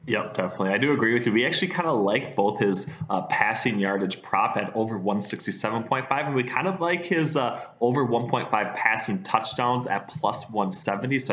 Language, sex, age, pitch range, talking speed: English, male, 20-39, 95-120 Hz, 190 wpm